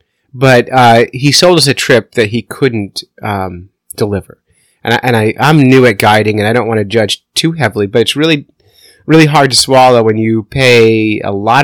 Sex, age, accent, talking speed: male, 30-49, American, 205 wpm